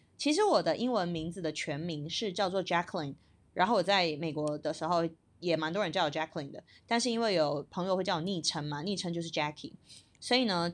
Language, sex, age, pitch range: Chinese, female, 20-39, 165-225 Hz